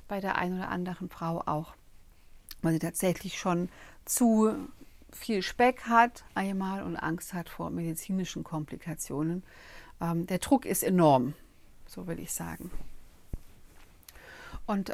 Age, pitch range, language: 50-69, 180-235 Hz, German